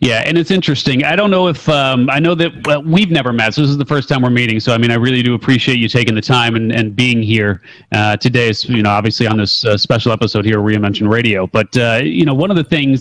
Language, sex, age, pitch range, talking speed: English, male, 30-49, 120-150 Hz, 280 wpm